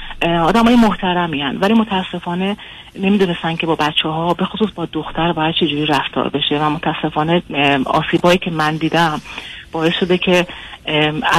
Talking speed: 150 wpm